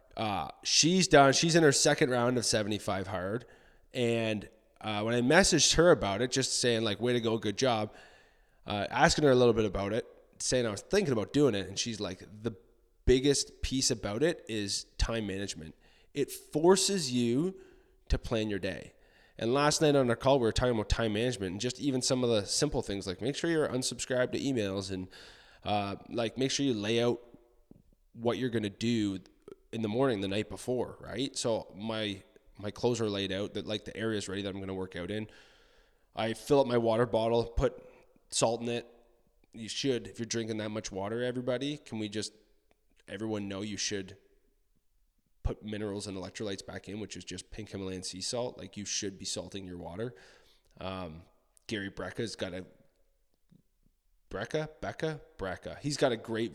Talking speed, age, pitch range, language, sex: 195 wpm, 20-39, 100-125 Hz, English, male